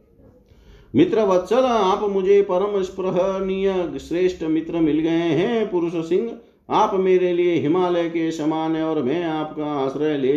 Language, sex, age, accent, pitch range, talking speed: Hindi, male, 50-69, native, 135-195 Hz, 140 wpm